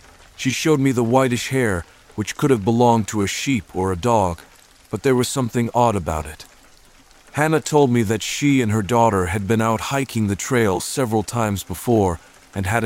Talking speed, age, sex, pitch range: 195 wpm, 40-59, male, 95-125 Hz